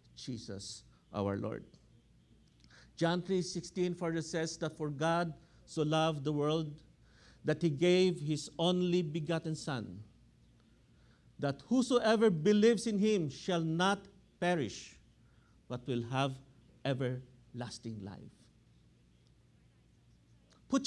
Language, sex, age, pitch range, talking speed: English, male, 50-69, 120-185 Hz, 105 wpm